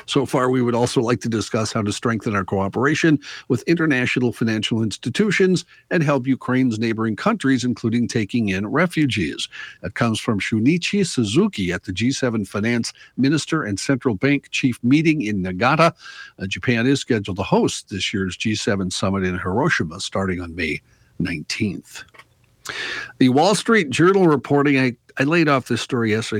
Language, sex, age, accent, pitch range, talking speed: English, male, 60-79, American, 105-135 Hz, 160 wpm